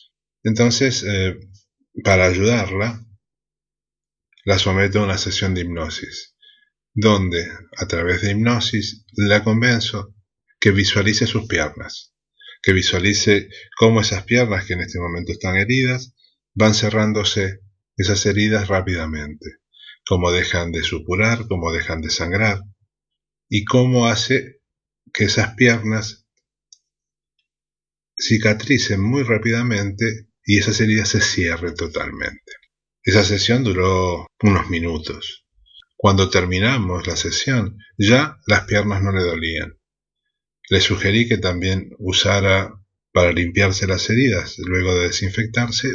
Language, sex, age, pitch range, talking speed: Spanish, male, 30-49, 90-110 Hz, 115 wpm